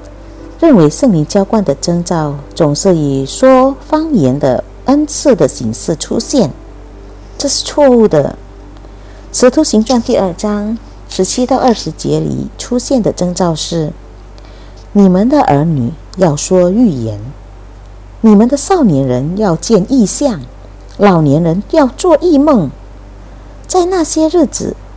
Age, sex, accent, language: 50-69, female, American, Indonesian